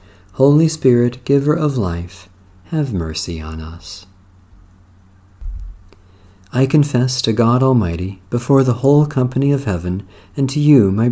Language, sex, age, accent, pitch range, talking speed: English, male, 50-69, American, 90-130 Hz, 130 wpm